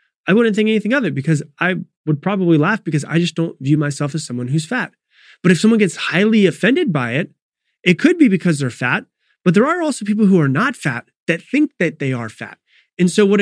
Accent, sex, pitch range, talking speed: American, male, 135-190 Hz, 235 wpm